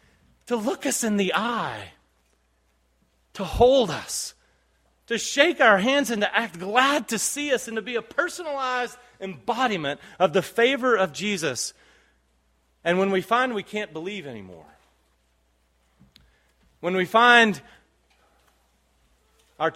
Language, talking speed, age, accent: English, 130 wpm, 30-49, American